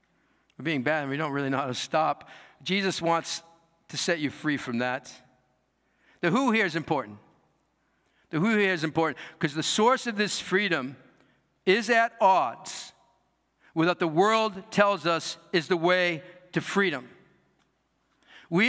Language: English